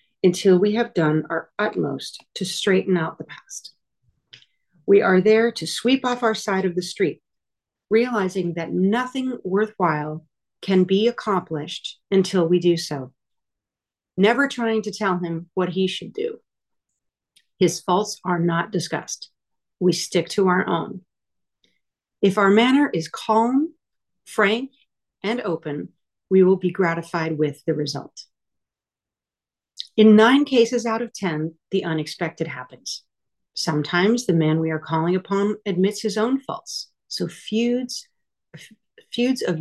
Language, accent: English, American